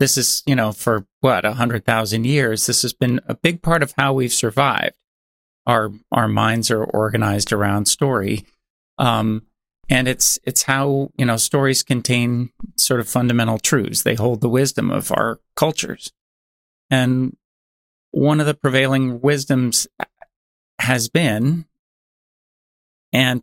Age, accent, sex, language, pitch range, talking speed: 30-49, American, male, English, 115-140 Hz, 145 wpm